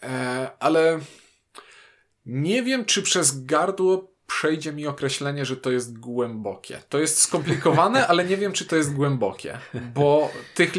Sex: male